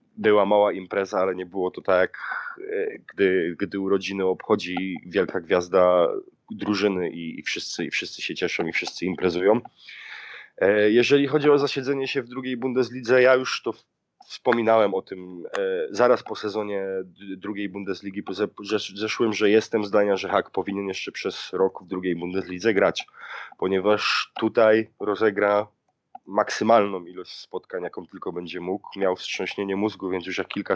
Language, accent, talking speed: Polish, native, 150 wpm